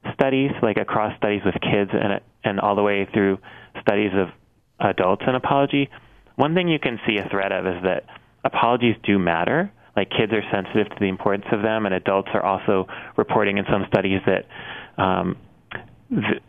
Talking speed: 180 wpm